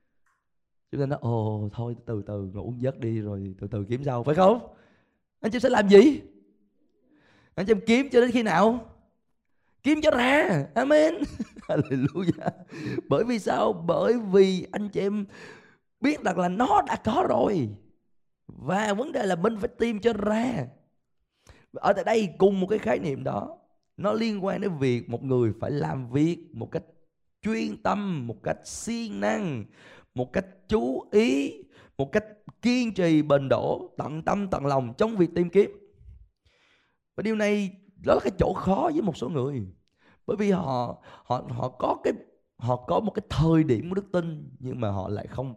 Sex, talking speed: male, 175 wpm